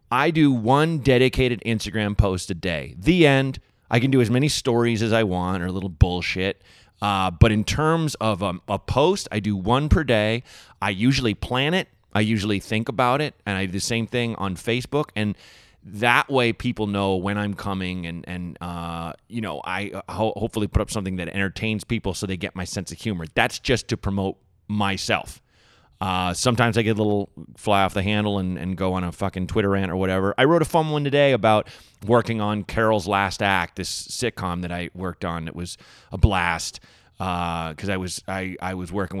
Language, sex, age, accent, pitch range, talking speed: English, male, 30-49, American, 90-115 Hz, 210 wpm